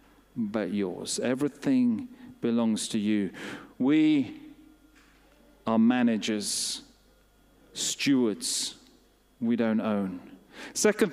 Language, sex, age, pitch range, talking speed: English, male, 40-59, 160-240 Hz, 75 wpm